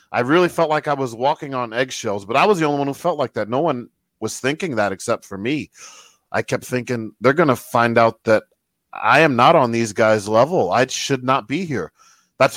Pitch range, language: 115-135 Hz, English